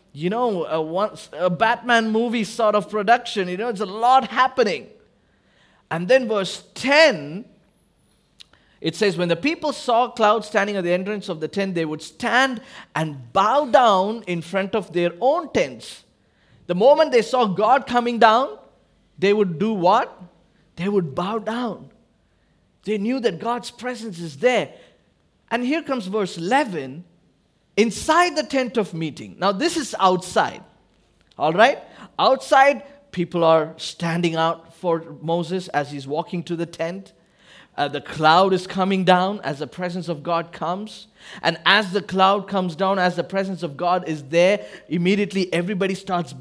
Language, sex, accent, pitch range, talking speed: English, male, Indian, 175-230 Hz, 160 wpm